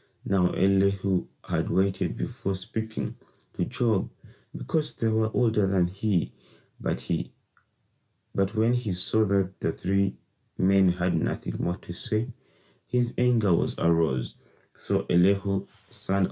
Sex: male